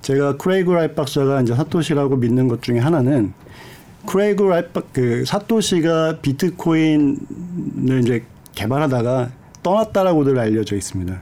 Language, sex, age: Korean, male, 50-69